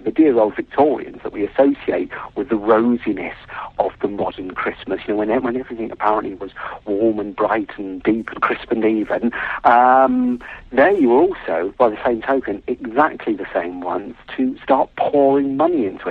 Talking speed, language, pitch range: 175 wpm, English, 105-135 Hz